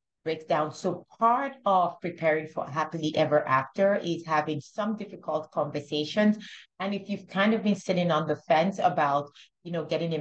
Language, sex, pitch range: English, female, 150-195 Hz